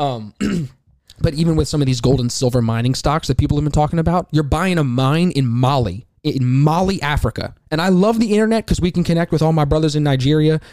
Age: 20-39